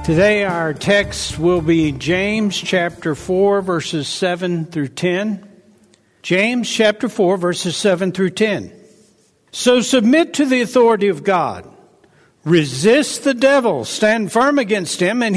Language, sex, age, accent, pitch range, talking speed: English, male, 60-79, American, 180-245 Hz, 135 wpm